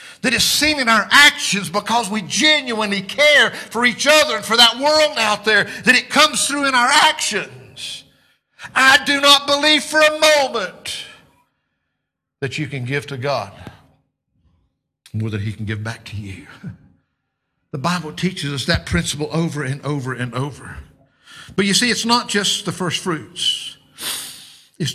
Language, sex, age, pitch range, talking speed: English, male, 50-69, 140-215 Hz, 165 wpm